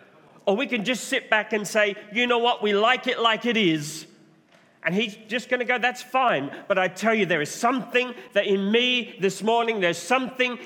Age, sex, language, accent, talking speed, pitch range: 40-59, male, English, British, 220 wpm, 200-250 Hz